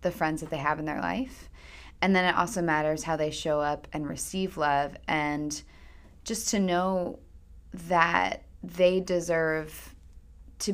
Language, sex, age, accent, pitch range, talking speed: English, female, 20-39, American, 145-180 Hz, 155 wpm